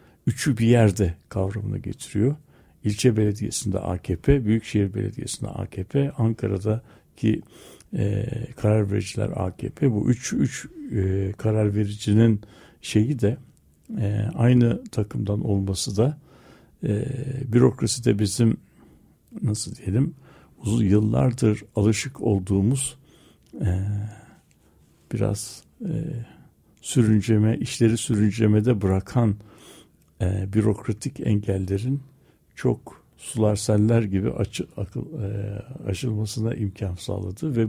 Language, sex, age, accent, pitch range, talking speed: Turkish, male, 60-79, native, 100-120 Hz, 90 wpm